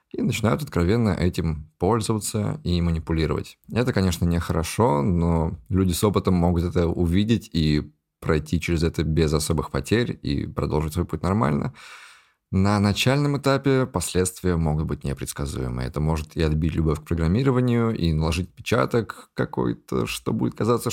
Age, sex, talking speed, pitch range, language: 20-39, male, 145 wpm, 75-100 Hz, Russian